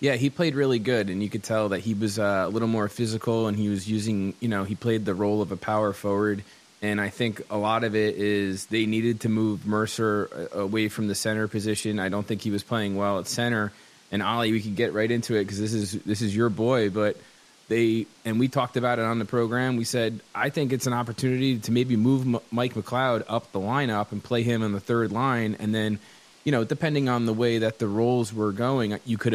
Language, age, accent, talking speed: English, 20-39, American, 245 wpm